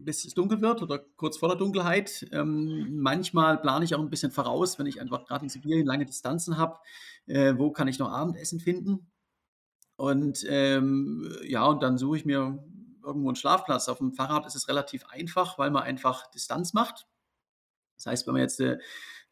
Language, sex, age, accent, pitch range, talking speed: German, male, 40-59, German, 135-180 Hz, 195 wpm